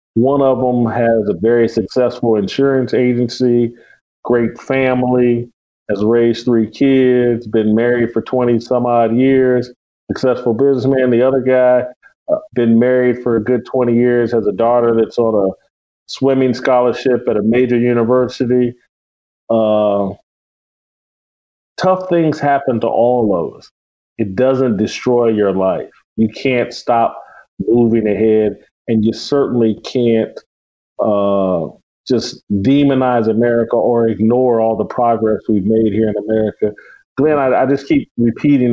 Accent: American